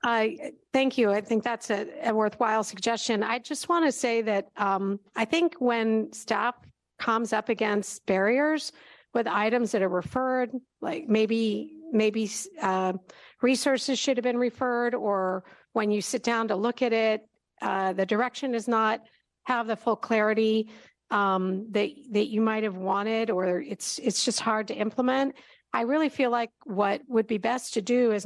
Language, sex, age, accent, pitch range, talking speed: English, female, 50-69, American, 210-245 Hz, 175 wpm